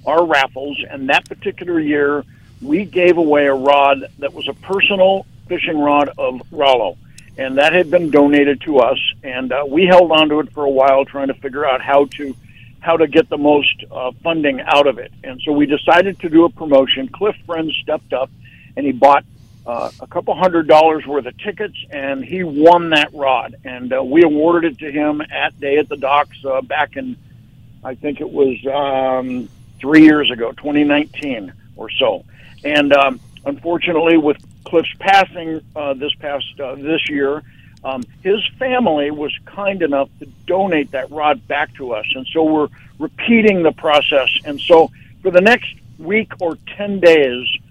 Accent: American